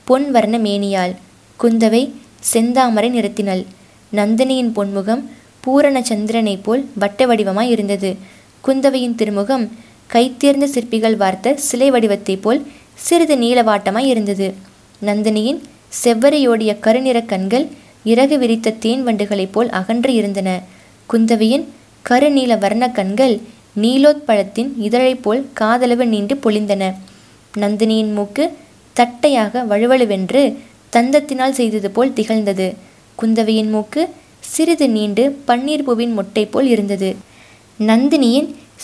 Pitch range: 210-260 Hz